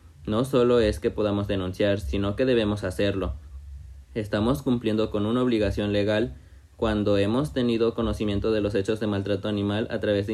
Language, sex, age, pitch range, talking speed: Spanish, male, 20-39, 100-110 Hz, 170 wpm